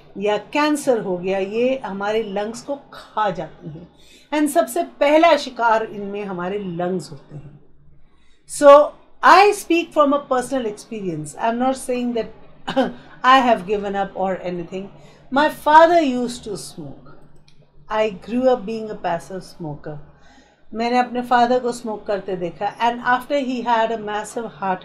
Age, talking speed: 50-69, 140 wpm